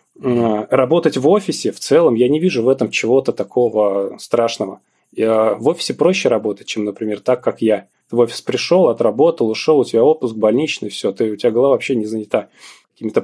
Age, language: 20-39, Russian